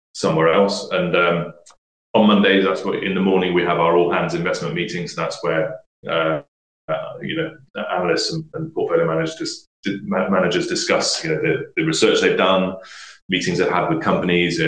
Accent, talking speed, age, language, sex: British, 180 wpm, 30-49, English, male